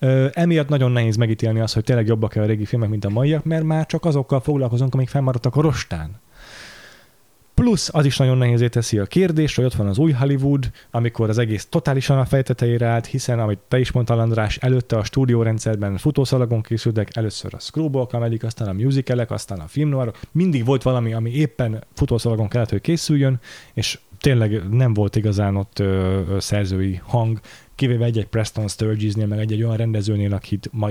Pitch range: 105-130 Hz